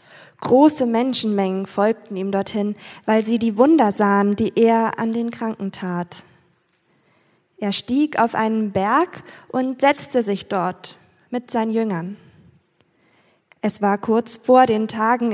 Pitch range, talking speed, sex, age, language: 205-260 Hz, 135 wpm, female, 20-39, German